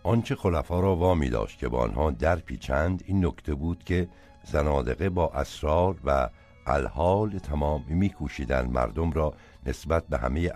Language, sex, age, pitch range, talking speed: Persian, male, 60-79, 65-90 Hz, 150 wpm